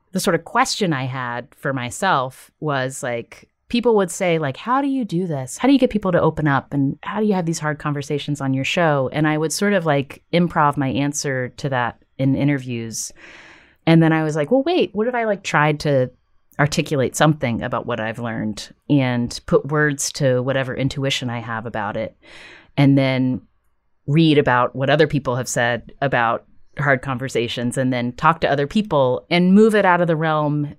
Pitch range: 120-155 Hz